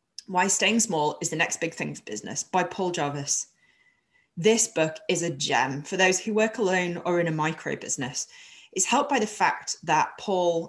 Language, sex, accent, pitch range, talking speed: English, female, British, 165-225 Hz, 195 wpm